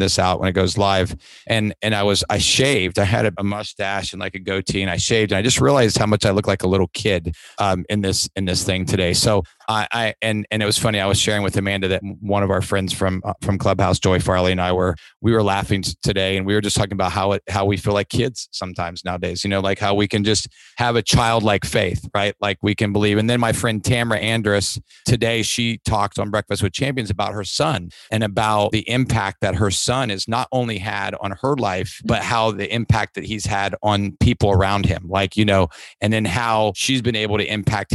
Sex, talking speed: male, 250 wpm